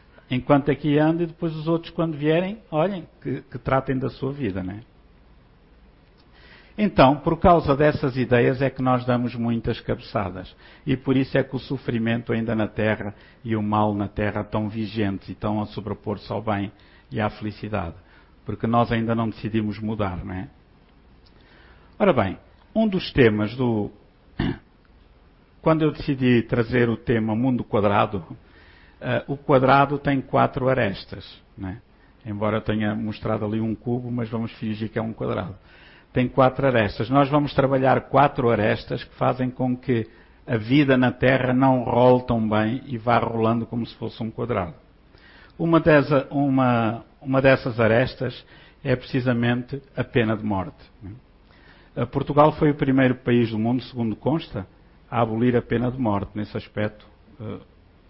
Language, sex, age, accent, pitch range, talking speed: Portuguese, male, 60-79, Brazilian, 105-135 Hz, 160 wpm